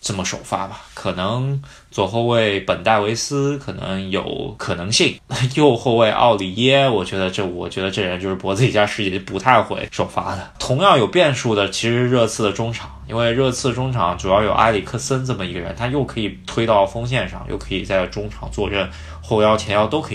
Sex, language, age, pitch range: male, Chinese, 20-39, 95-120 Hz